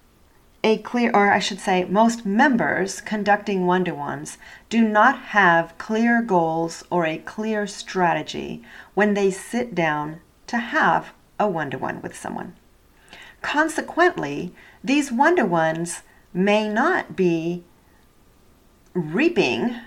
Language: English